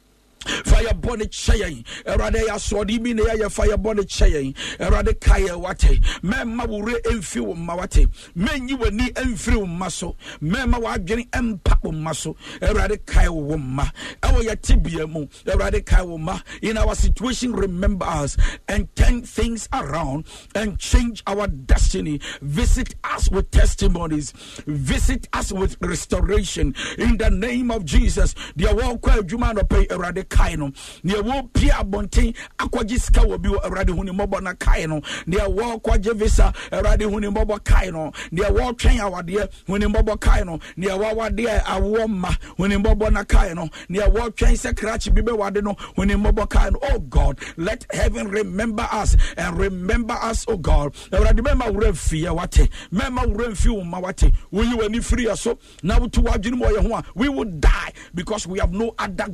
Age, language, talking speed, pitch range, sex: 50-69, English, 150 wpm, 165-225 Hz, male